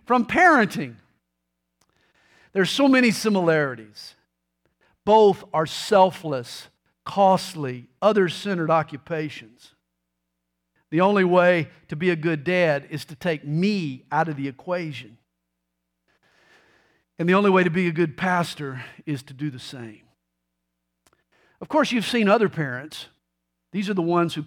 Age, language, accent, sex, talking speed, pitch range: 50-69, English, American, male, 130 wpm, 140-235 Hz